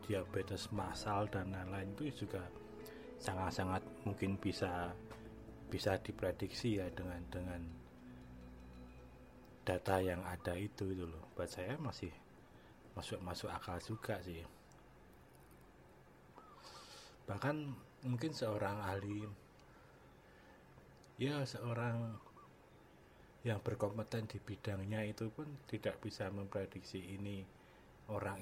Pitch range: 90-105 Hz